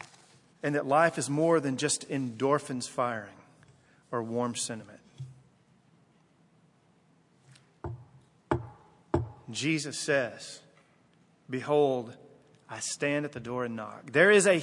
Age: 40-59